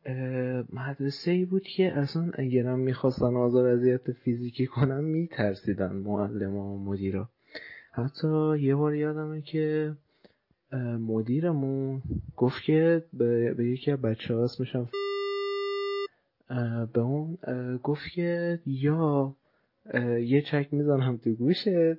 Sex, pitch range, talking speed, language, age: male, 115-145 Hz, 110 wpm, Persian, 30-49